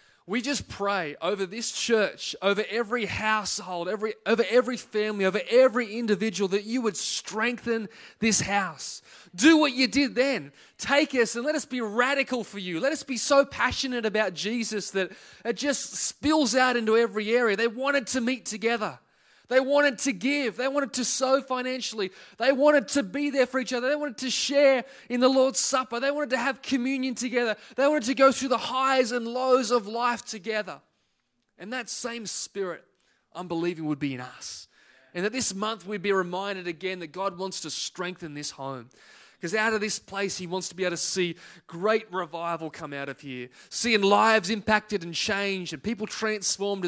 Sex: male